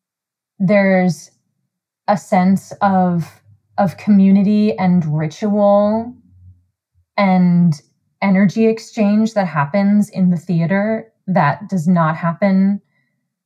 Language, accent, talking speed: English, American, 90 wpm